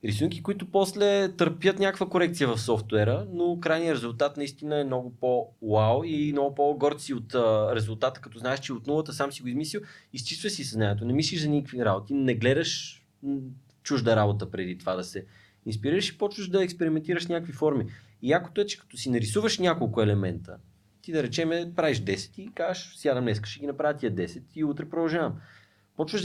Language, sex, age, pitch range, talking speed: Bulgarian, male, 20-39, 115-165 Hz, 180 wpm